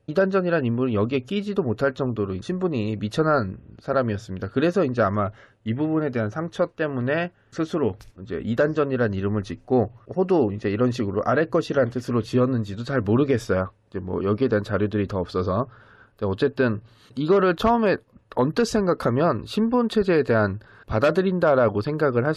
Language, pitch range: Korean, 105-150 Hz